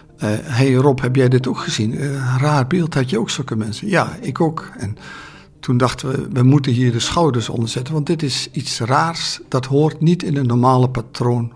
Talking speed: 225 wpm